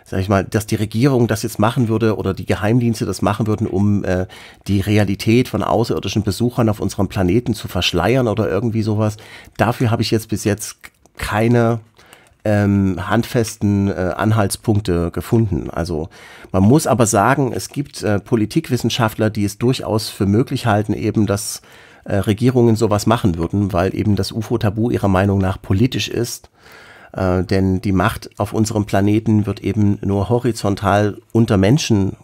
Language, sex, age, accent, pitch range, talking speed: German, male, 40-59, German, 95-115 Hz, 160 wpm